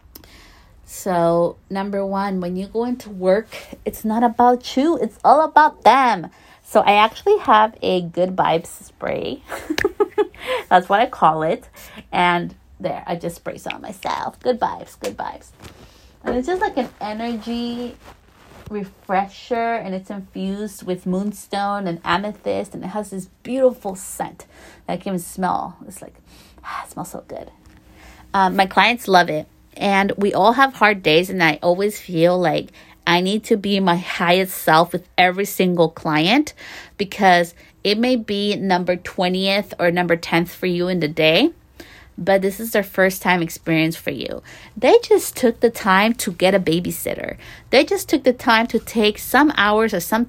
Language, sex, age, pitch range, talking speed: English, female, 30-49, 175-225 Hz, 170 wpm